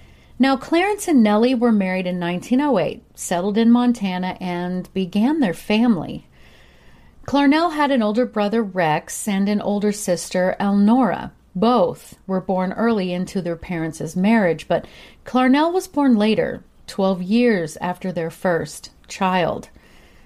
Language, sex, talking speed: English, female, 135 wpm